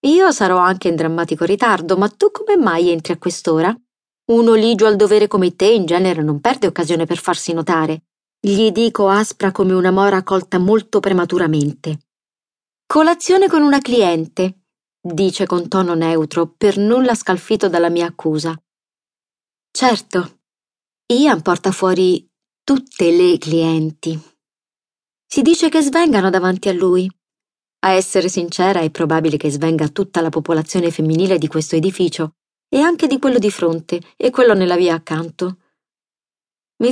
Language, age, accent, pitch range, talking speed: Italian, 30-49, native, 170-220 Hz, 145 wpm